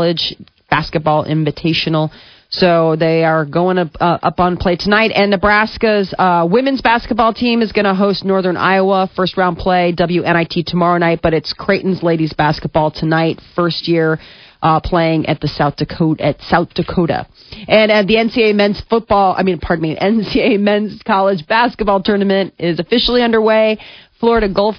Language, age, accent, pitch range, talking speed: English, 40-59, American, 160-200 Hz, 160 wpm